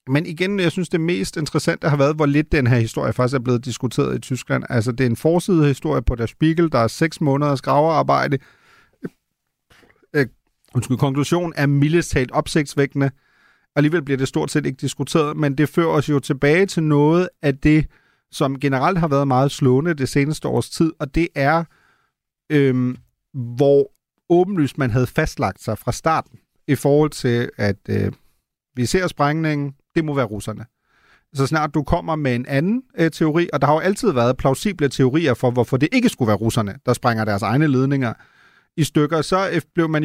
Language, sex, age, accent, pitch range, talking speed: Danish, male, 40-59, native, 135-170 Hz, 185 wpm